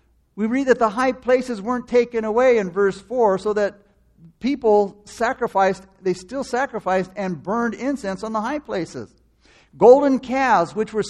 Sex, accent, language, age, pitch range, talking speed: male, American, English, 50-69, 185-245 Hz, 160 wpm